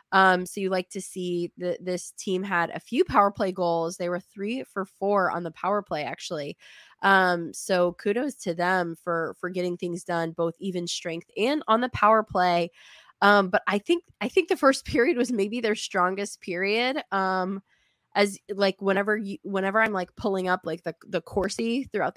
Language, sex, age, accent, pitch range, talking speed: English, female, 20-39, American, 180-215 Hz, 195 wpm